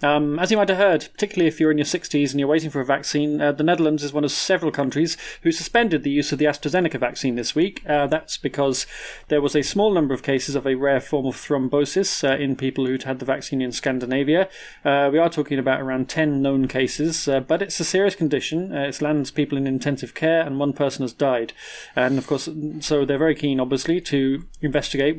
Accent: British